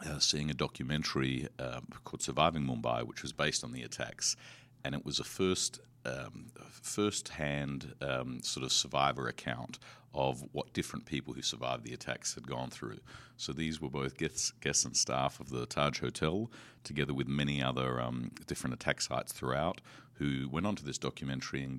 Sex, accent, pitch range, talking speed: male, Australian, 65-75 Hz, 175 wpm